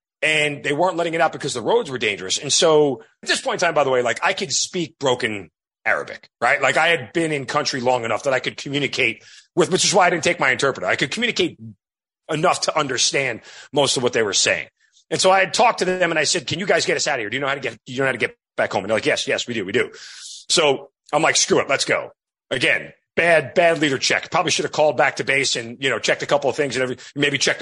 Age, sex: 30-49, male